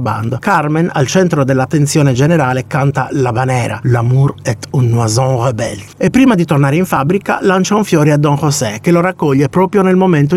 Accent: native